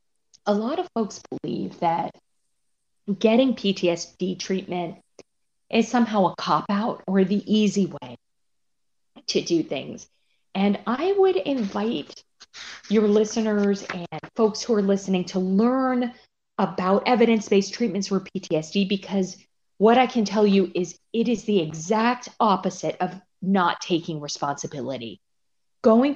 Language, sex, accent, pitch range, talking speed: English, female, American, 175-225 Hz, 125 wpm